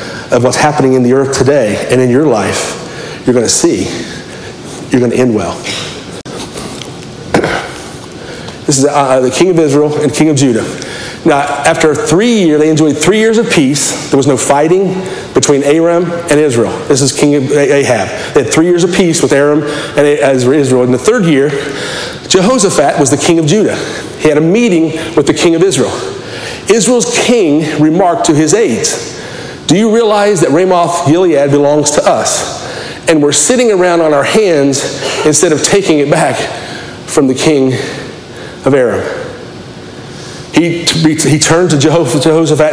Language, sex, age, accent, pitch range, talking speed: English, male, 40-59, American, 140-175 Hz, 170 wpm